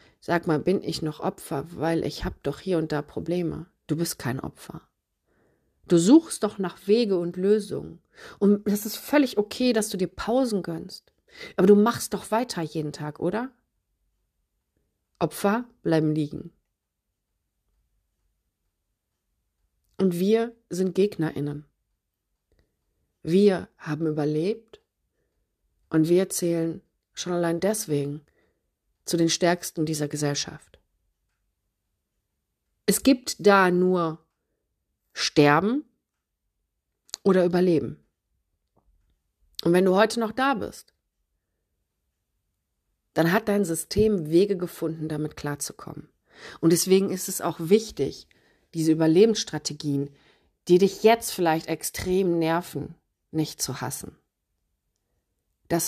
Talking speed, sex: 110 wpm, female